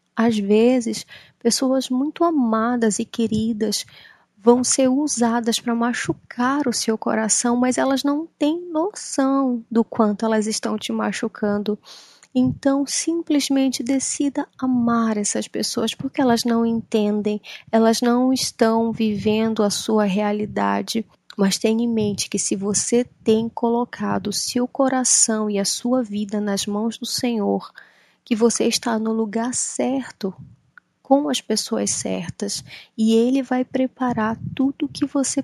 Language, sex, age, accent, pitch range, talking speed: Portuguese, female, 20-39, Brazilian, 215-255 Hz, 135 wpm